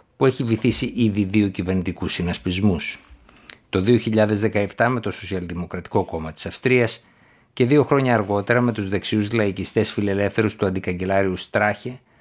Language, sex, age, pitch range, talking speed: Greek, male, 60-79, 95-115 Hz, 135 wpm